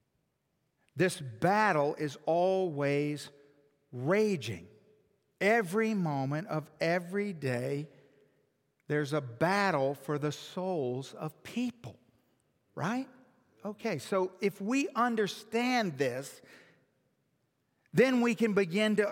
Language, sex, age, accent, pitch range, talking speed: English, male, 50-69, American, 170-230 Hz, 95 wpm